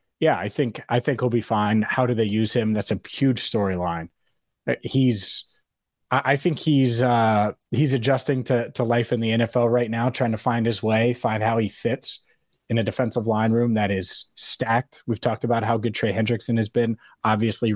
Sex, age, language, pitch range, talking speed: male, 20-39, English, 105-120 Hz, 200 wpm